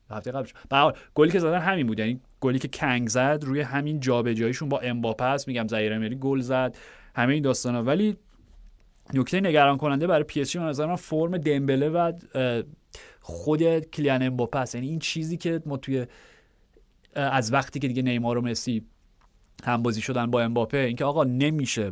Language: Persian